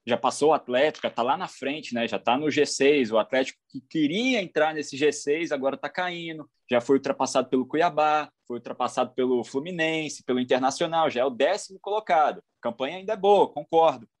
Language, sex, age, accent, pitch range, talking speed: Portuguese, male, 20-39, Brazilian, 135-185 Hz, 190 wpm